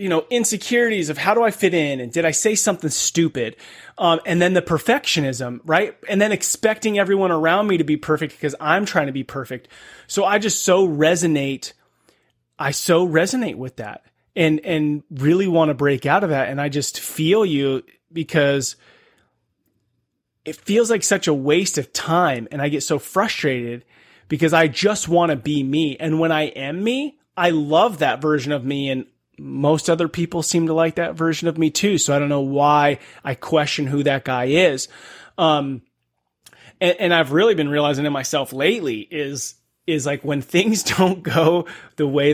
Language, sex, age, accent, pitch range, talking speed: English, male, 30-49, American, 140-175 Hz, 190 wpm